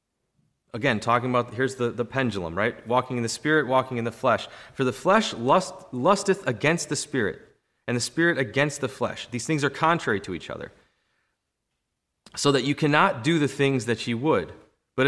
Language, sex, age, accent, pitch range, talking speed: English, male, 30-49, American, 125-165 Hz, 190 wpm